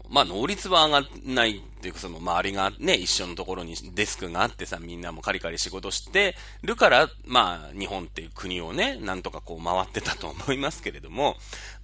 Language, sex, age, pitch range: Japanese, male, 30-49, 90-135 Hz